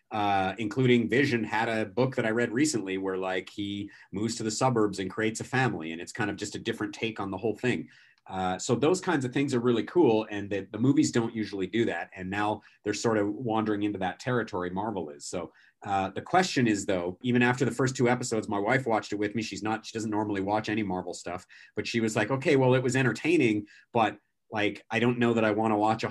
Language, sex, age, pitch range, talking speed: English, male, 40-59, 100-120 Hz, 250 wpm